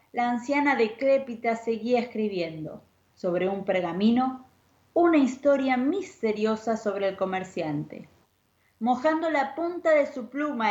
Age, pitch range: 20-39, 195-255 Hz